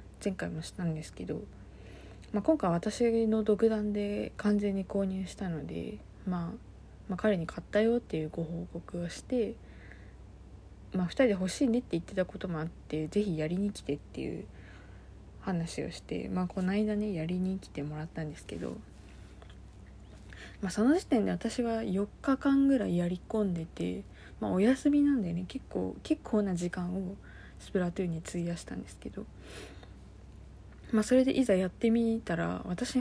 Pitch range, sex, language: 160-215 Hz, female, Japanese